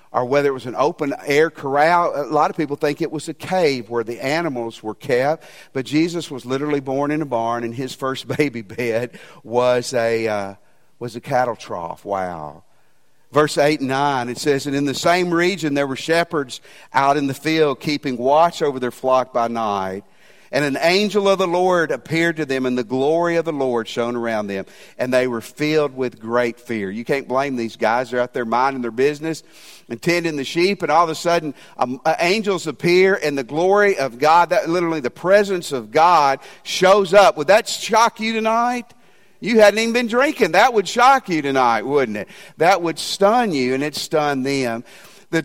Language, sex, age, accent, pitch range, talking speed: English, male, 50-69, American, 125-170 Hz, 205 wpm